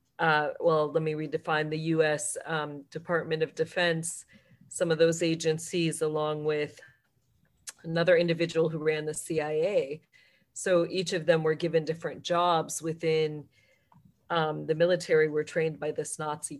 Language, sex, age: English, female, 40-59